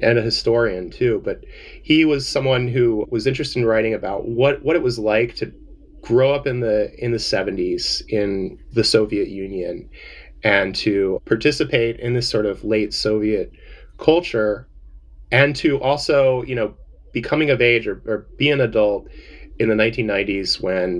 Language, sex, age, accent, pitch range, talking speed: English, male, 30-49, American, 110-150 Hz, 165 wpm